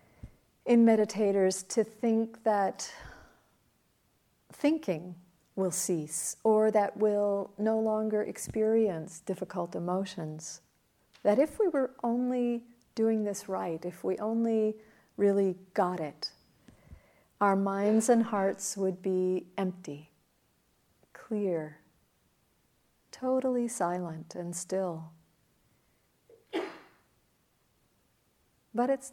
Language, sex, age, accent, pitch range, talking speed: English, female, 50-69, American, 185-230 Hz, 90 wpm